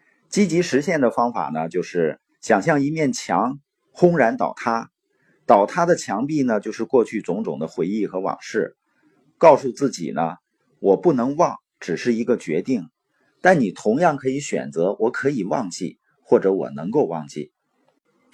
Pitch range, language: 125-175 Hz, Chinese